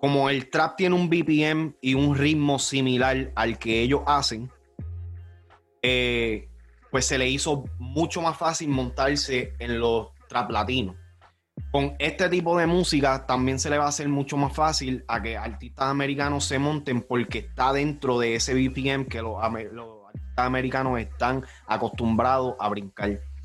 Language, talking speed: Spanish, 155 wpm